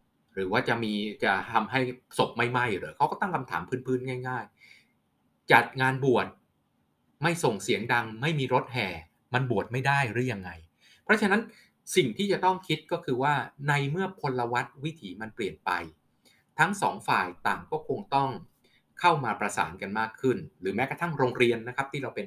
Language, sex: Thai, male